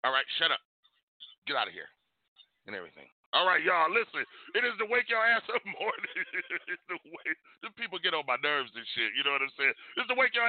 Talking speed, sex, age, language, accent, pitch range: 235 wpm, male, 40-59, English, American, 145-230 Hz